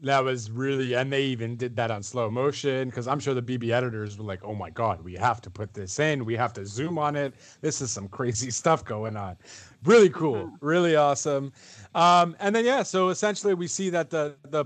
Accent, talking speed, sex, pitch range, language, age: American, 230 wpm, male, 130-175 Hz, English, 30-49